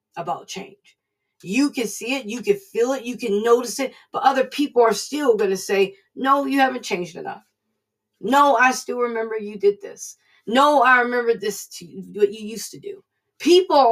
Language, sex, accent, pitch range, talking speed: English, female, American, 205-280 Hz, 200 wpm